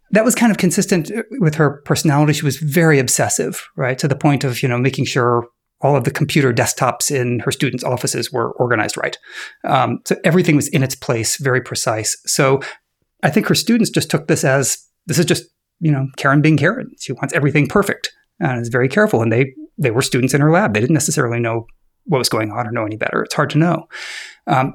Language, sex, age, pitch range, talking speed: English, male, 30-49, 130-170 Hz, 225 wpm